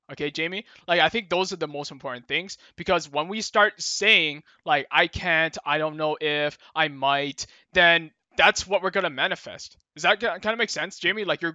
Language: English